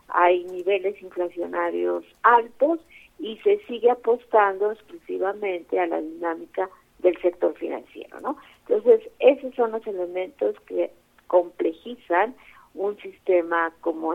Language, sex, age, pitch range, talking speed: Spanish, female, 50-69, 170-240 Hz, 110 wpm